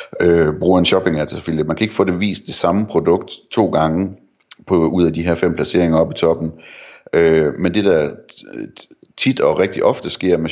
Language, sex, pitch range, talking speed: Danish, male, 80-90 Hz, 185 wpm